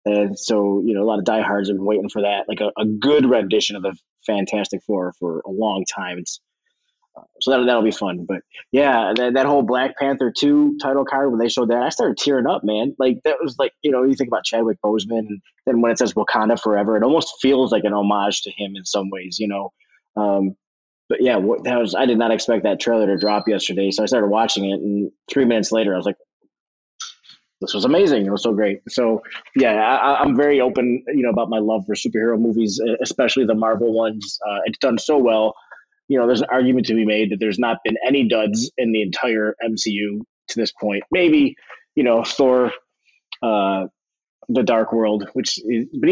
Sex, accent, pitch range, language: male, American, 105-125 Hz, English